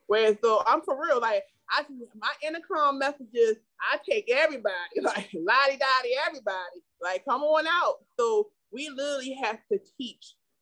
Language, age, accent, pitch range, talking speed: English, 30-49, American, 205-340 Hz, 155 wpm